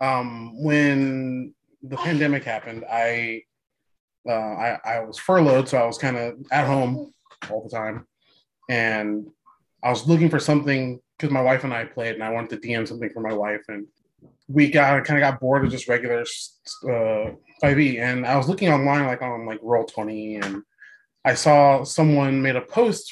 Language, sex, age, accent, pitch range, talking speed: English, male, 20-39, American, 120-155 Hz, 185 wpm